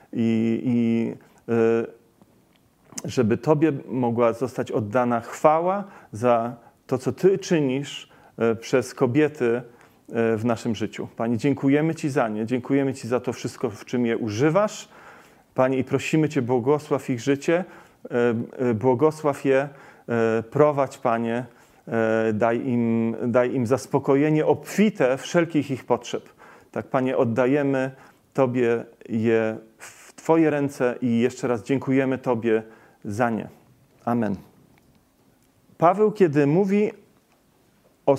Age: 40-59